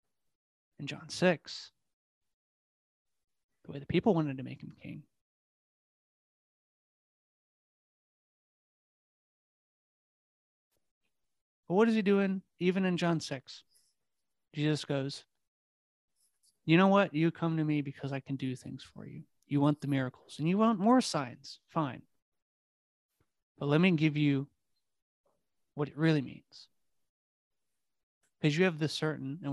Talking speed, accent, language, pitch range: 125 wpm, American, English, 135-170 Hz